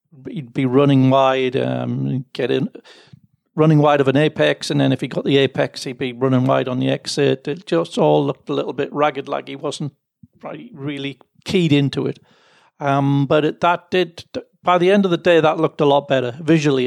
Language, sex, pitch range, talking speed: English, male, 135-160 Hz, 205 wpm